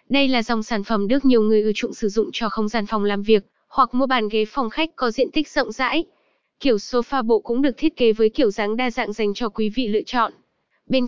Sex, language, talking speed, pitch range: female, Vietnamese, 260 wpm, 220-270 Hz